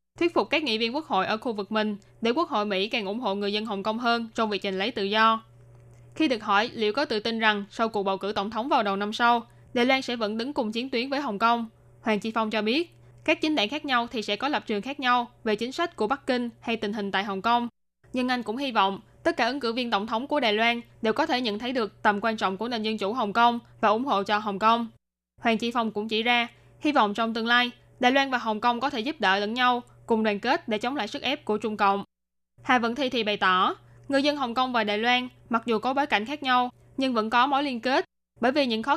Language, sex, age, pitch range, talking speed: Vietnamese, female, 10-29, 210-250 Hz, 285 wpm